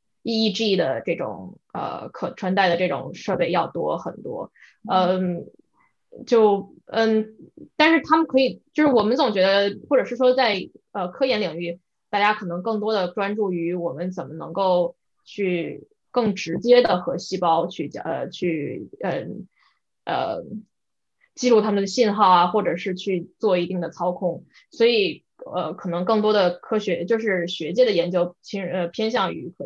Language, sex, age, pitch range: Chinese, female, 10-29, 180-230 Hz